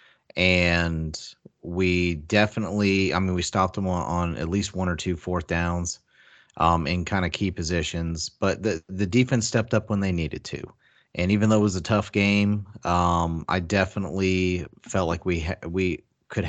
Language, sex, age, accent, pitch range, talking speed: English, male, 30-49, American, 90-110 Hz, 175 wpm